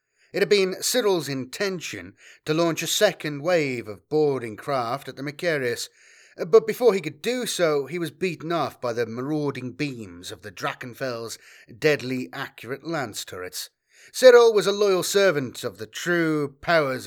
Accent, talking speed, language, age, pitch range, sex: British, 160 wpm, English, 30-49, 125-175 Hz, male